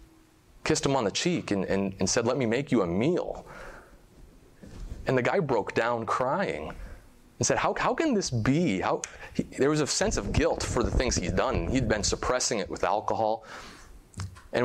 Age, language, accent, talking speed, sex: 30-49, English, American, 195 wpm, male